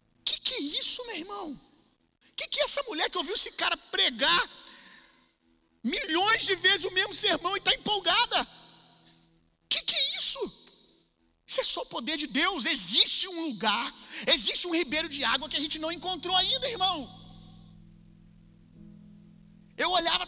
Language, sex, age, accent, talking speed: Gujarati, male, 40-59, Brazilian, 150 wpm